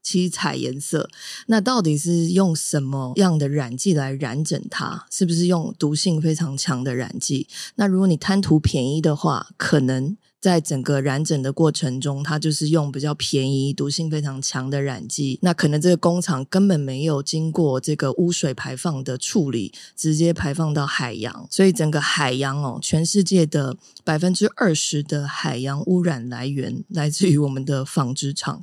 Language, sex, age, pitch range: Chinese, female, 20-39, 140-180 Hz